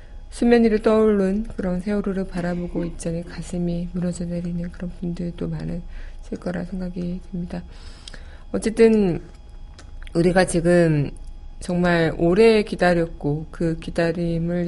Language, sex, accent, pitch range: Korean, female, native, 165-200 Hz